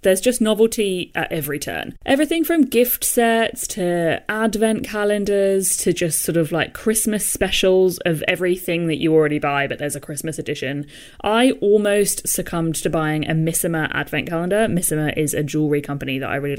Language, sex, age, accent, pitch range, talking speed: English, female, 20-39, British, 155-215 Hz, 175 wpm